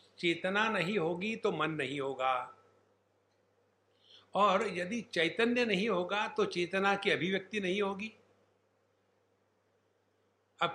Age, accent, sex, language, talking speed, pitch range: 60-79, Indian, male, English, 105 wpm, 150-205 Hz